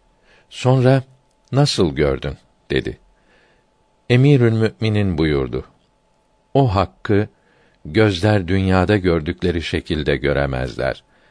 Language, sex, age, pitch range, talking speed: Turkish, male, 60-79, 85-110 Hz, 75 wpm